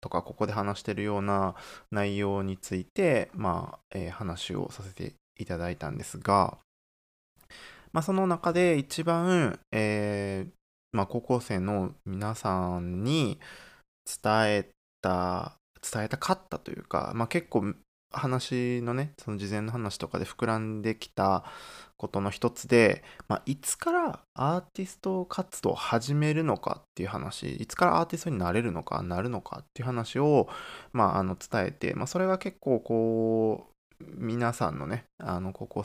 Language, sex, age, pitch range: Japanese, male, 20-39, 95-125 Hz